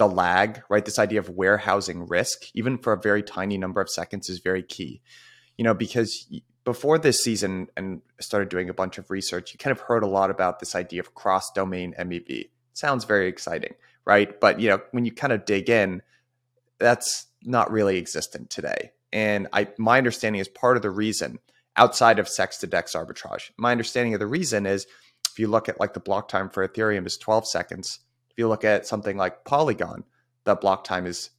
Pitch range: 95-115 Hz